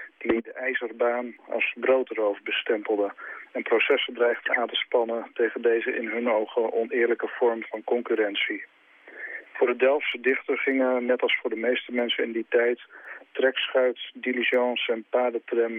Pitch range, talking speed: 115-135 Hz, 145 wpm